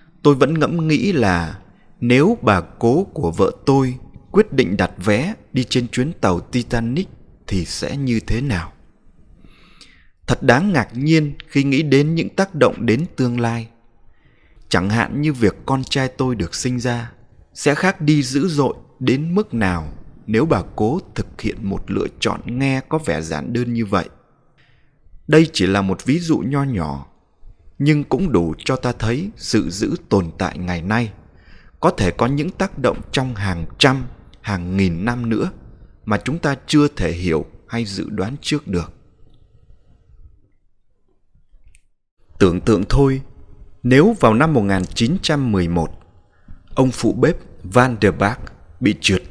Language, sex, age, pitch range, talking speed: Vietnamese, male, 20-39, 95-135 Hz, 160 wpm